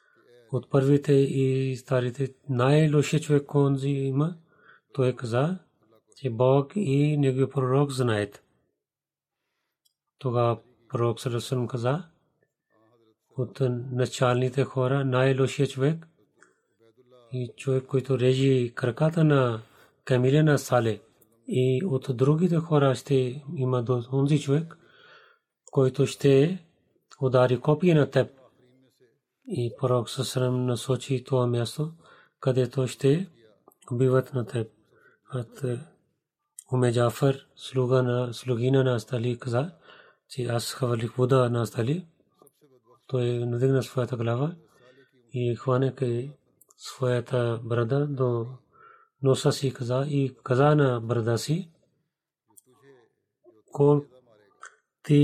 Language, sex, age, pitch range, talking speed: Bulgarian, male, 40-59, 125-145 Hz, 100 wpm